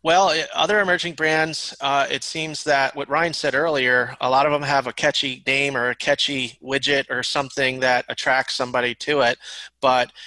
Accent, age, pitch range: American, 30-49, 130-145 Hz